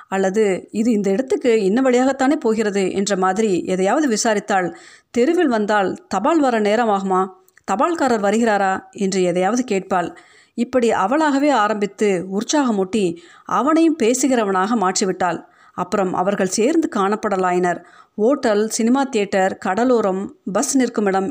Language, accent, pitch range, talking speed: Tamil, native, 190-255 Hz, 115 wpm